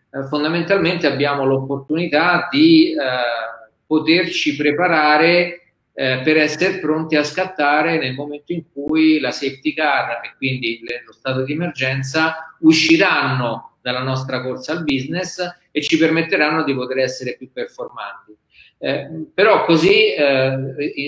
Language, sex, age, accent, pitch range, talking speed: Italian, male, 40-59, native, 130-160 Hz, 125 wpm